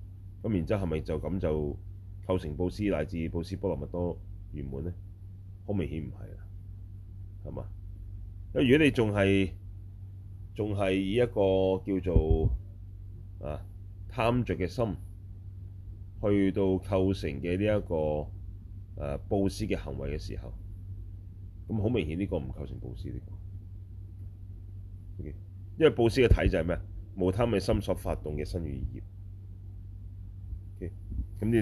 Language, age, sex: Chinese, 30-49, male